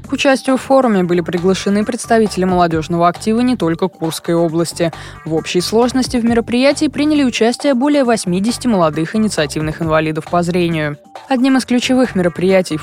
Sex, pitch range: female, 165-235 Hz